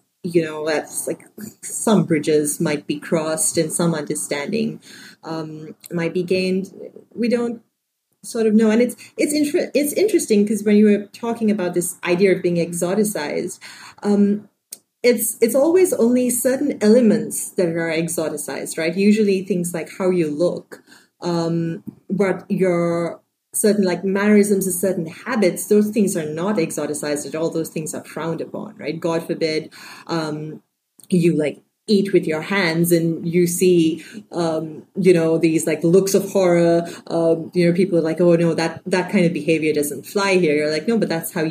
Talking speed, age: 170 wpm, 30-49